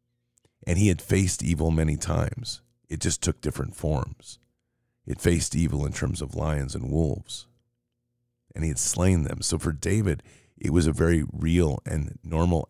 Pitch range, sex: 80-120 Hz, male